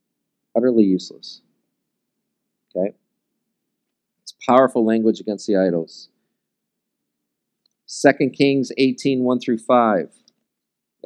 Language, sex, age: English, male, 40-59